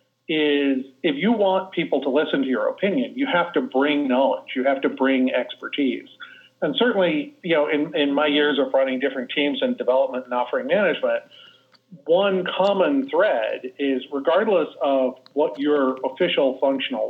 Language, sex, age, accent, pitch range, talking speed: English, male, 40-59, American, 135-185 Hz, 165 wpm